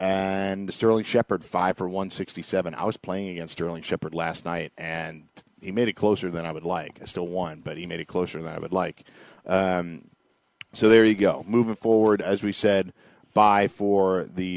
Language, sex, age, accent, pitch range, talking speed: English, male, 40-59, American, 85-100 Hz, 200 wpm